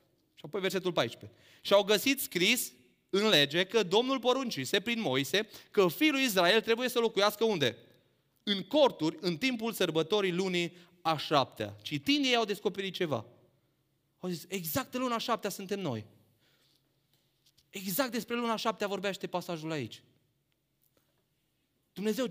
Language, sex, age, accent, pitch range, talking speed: Romanian, male, 30-49, native, 140-205 Hz, 135 wpm